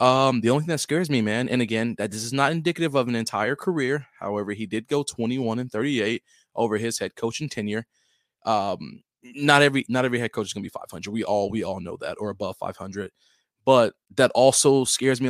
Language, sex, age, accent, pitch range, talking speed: English, male, 20-39, American, 110-140 Hz, 220 wpm